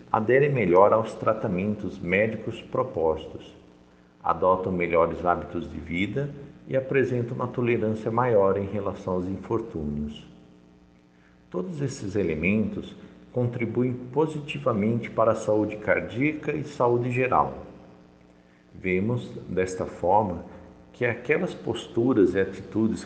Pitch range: 75-115 Hz